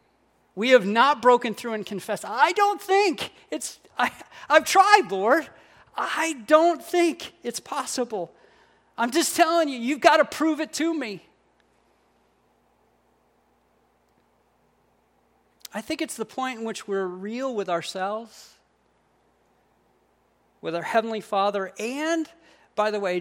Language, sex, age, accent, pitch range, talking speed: English, male, 50-69, American, 180-280 Hz, 130 wpm